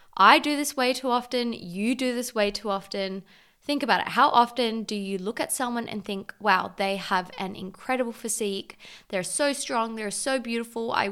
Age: 20-39